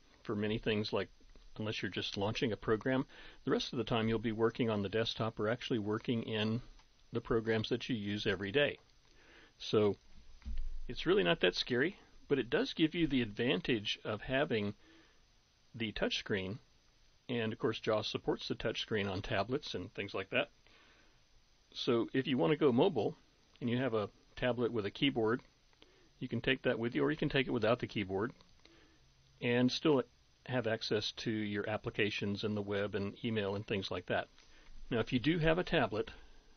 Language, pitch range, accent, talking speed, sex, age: English, 105-125 Hz, American, 190 wpm, male, 50-69